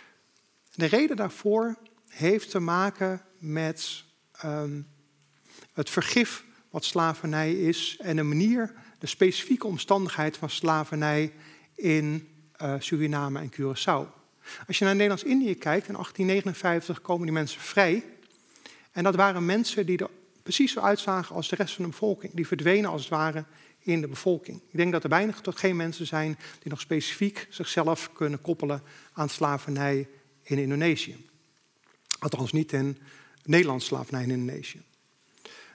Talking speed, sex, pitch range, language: 145 wpm, male, 155-195 Hz, Dutch